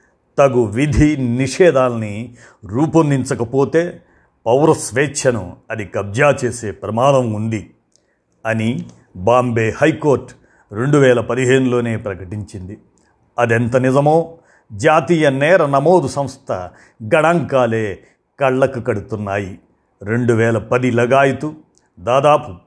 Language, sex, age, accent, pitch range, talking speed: Telugu, male, 50-69, native, 115-145 Hz, 80 wpm